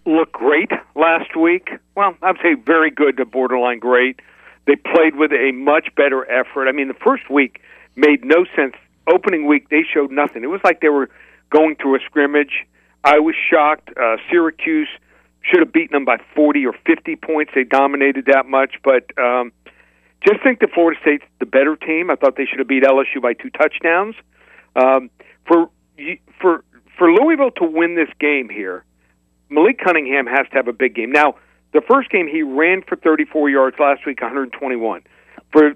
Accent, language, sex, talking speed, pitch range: American, English, male, 185 wpm, 130-160 Hz